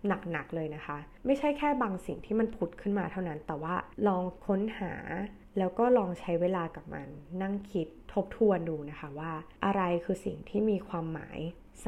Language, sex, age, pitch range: Thai, female, 20-39, 160-200 Hz